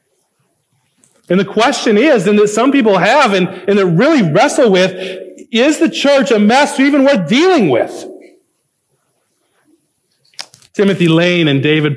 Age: 40-59